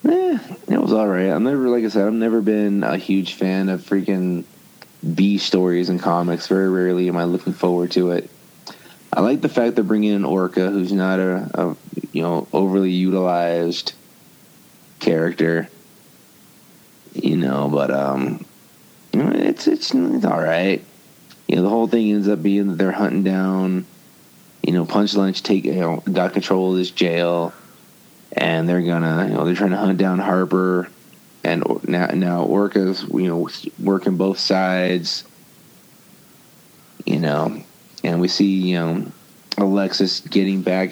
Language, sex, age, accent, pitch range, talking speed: English, male, 30-49, American, 90-100 Hz, 165 wpm